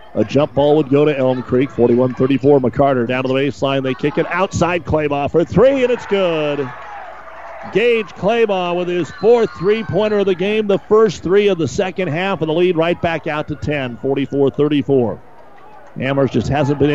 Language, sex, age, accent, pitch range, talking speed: English, male, 50-69, American, 130-170 Hz, 190 wpm